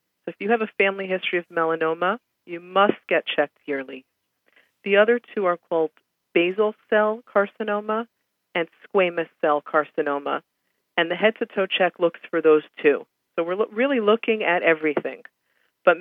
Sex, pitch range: female, 150-190 Hz